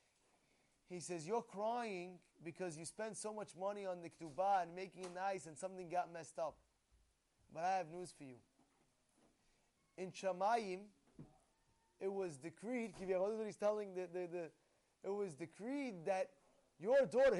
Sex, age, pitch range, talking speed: male, 20-39, 200-275 Hz, 150 wpm